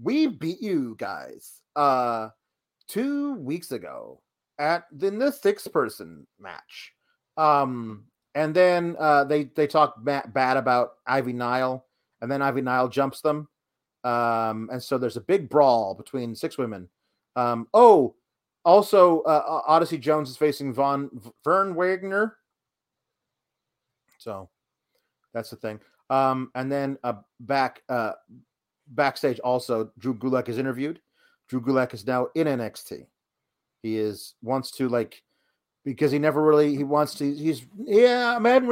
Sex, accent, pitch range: male, American, 130-195 Hz